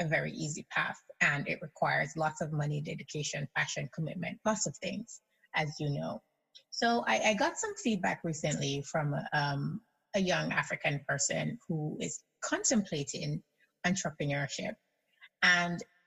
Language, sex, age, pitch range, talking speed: English, female, 30-49, 170-225 Hz, 140 wpm